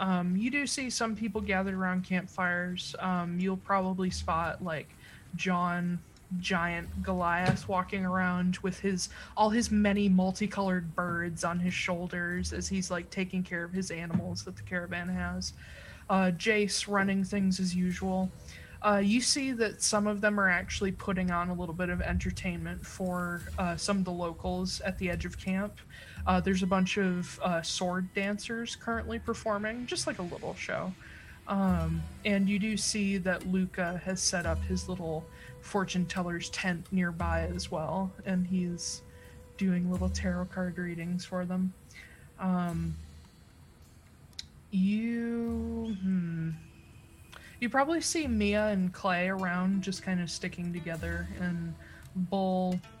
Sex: female